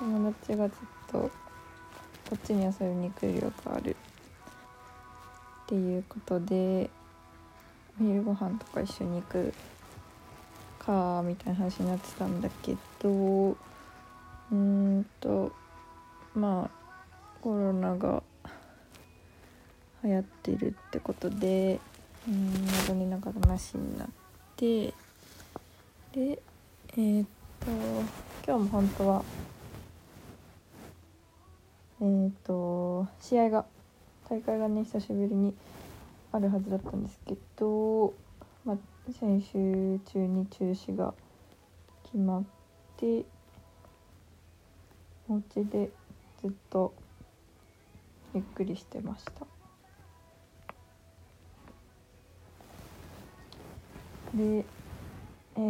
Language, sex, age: Japanese, female, 20-39